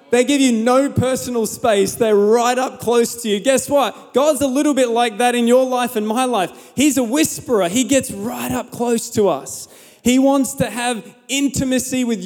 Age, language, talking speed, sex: 20-39, English, 205 wpm, male